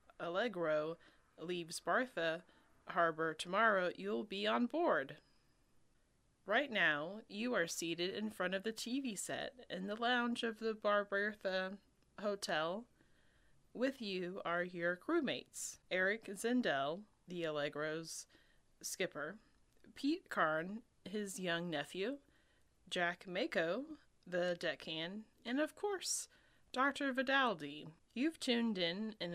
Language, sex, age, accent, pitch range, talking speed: English, female, 20-39, American, 175-250 Hz, 110 wpm